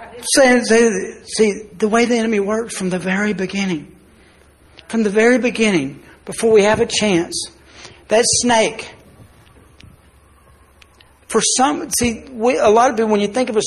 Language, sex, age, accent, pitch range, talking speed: English, male, 60-79, American, 190-230 Hz, 155 wpm